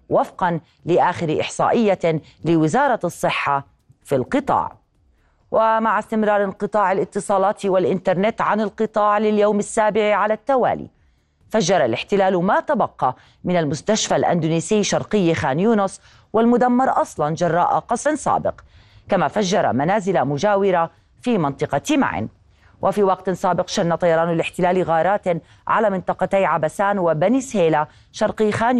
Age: 30-49